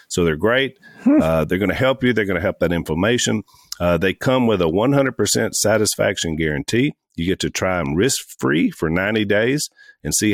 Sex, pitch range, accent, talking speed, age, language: male, 90-125 Hz, American, 195 wpm, 50-69, English